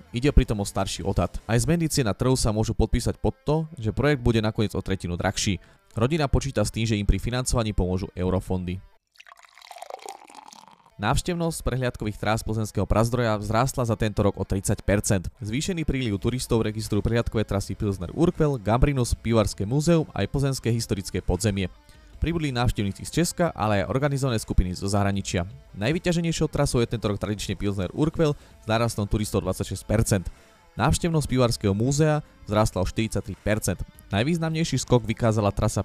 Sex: male